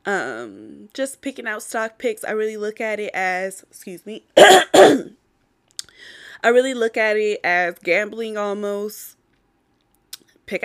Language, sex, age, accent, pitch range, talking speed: English, female, 20-39, American, 185-230 Hz, 130 wpm